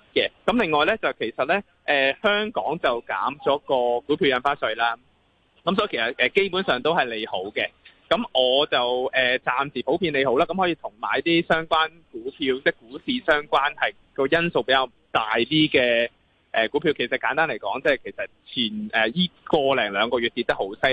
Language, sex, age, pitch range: Chinese, male, 20-39, 125-170 Hz